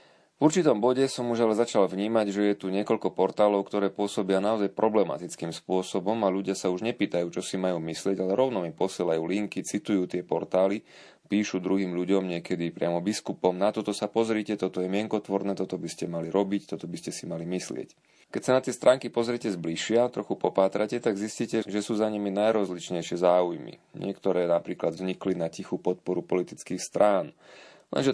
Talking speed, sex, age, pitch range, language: 180 wpm, male, 30-49, 90-105 Hz, Slovak